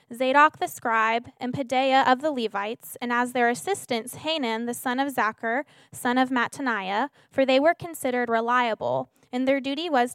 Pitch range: 230-270 Hz